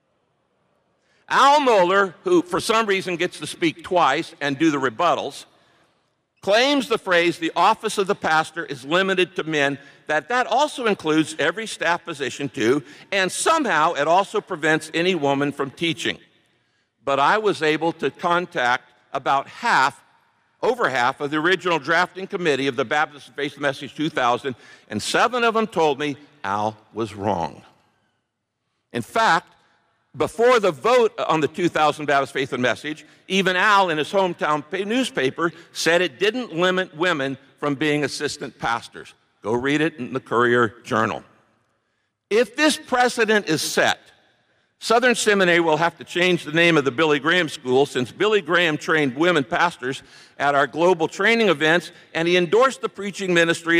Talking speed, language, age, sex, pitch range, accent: 160 wpm, English, 60-79, male, 140-190 Hz, American